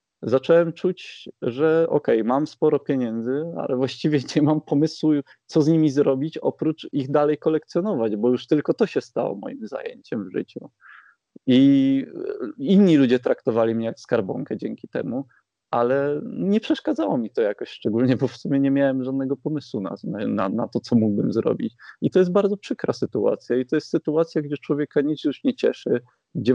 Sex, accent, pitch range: male, native, 120-160 Hz